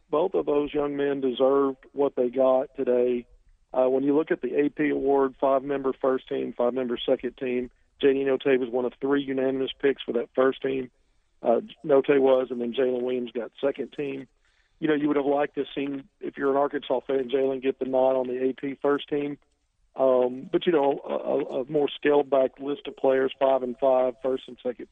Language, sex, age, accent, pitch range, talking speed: English, male, 50-69, American, 125-145 Hz, 205 wpm